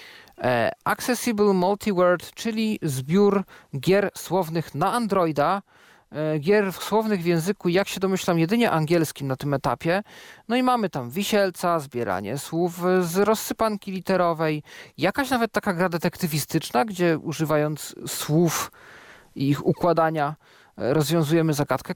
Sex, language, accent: male, Polish, native